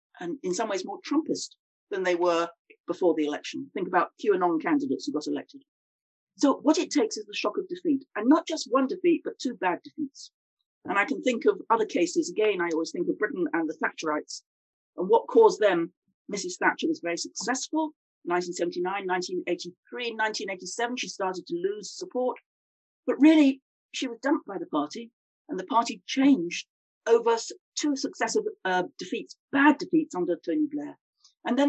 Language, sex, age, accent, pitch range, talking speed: English, female, 40-59, British, 195-315 Hz, 180 wpm